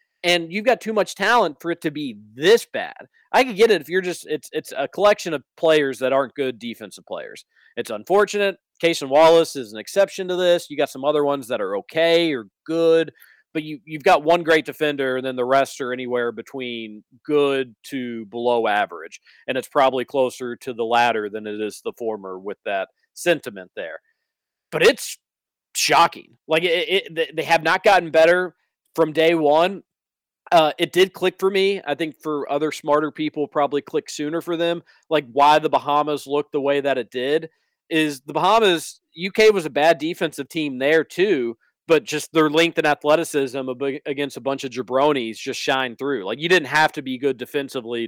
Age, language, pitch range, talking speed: 40-59, English, 130-165 Hz, 195 wpm